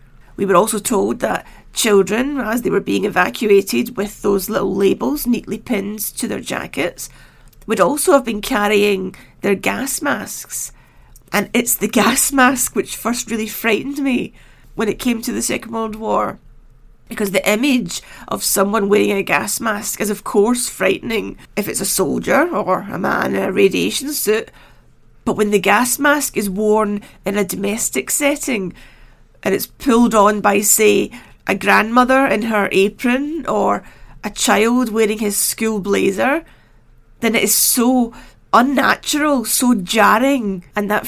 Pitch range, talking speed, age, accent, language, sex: 205-245 Hz, 160 wpm, 40-59, British, English, female